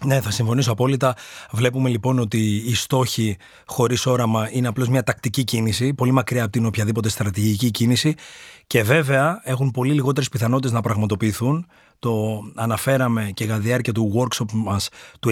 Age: 30-49